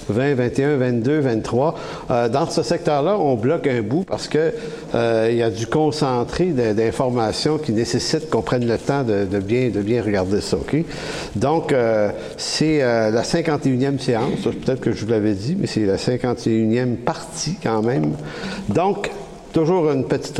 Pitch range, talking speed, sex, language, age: 115-145 Hz, 175 wpm, male, English, 60-79